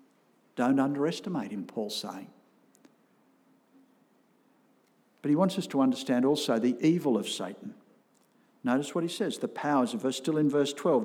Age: 60-79